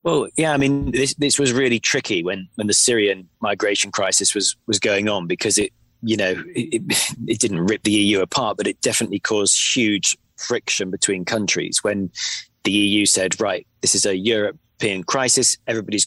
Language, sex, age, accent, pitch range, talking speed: English, male, 20-39, British, 100-115 Hz, 185 wpm